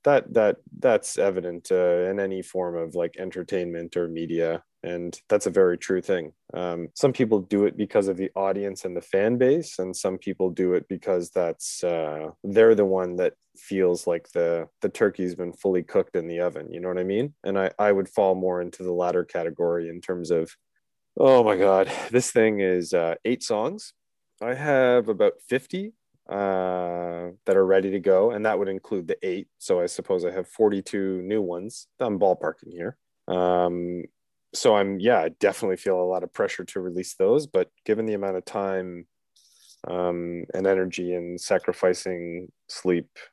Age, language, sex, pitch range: 20-39, English, male, 90-100 Hz